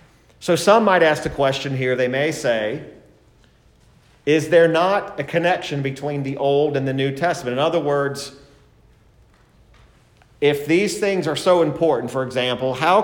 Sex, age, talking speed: male, 40-59, 155 wpm